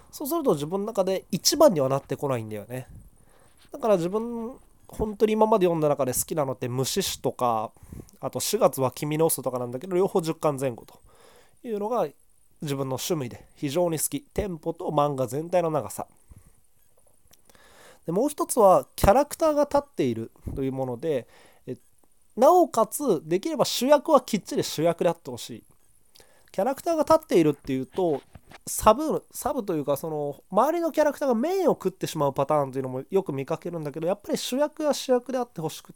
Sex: male